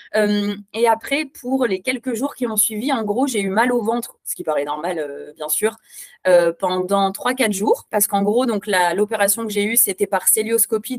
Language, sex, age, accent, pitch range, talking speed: French, female, 20-39, French, 185-245 Hz, 220 wpm